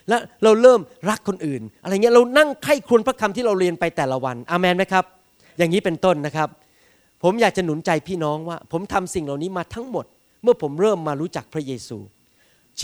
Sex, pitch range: male, 140-195 Hz